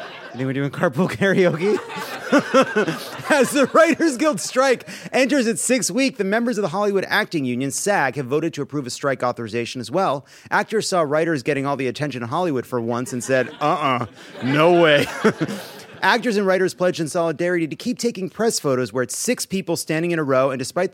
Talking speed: 200 wpm